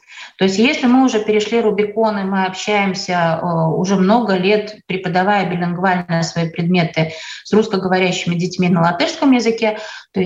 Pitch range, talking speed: 175-220 Hz, 140 wpm